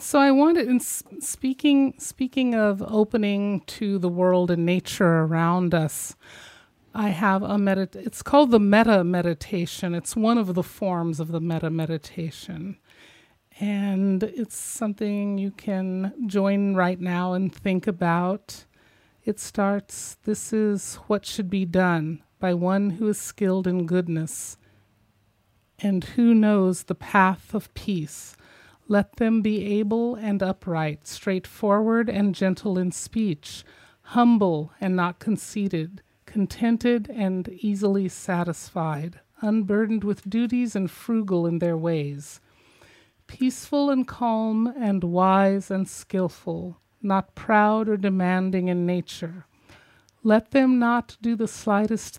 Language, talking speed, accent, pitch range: English, 130 wpm, American, 175-215 Hz